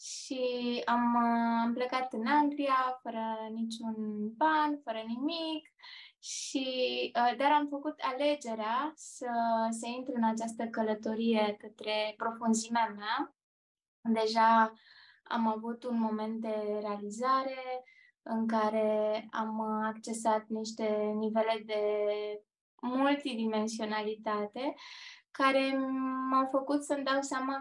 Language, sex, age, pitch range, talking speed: Romanian, female, 20-39, 220-260 Hz, 100 wpm